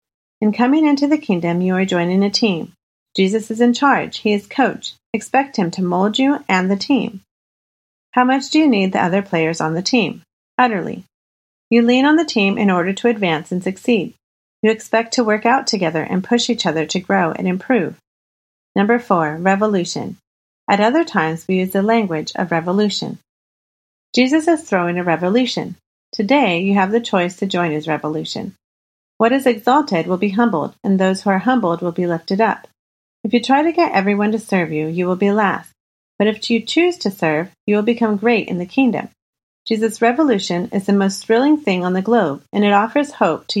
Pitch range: 185-240 Hz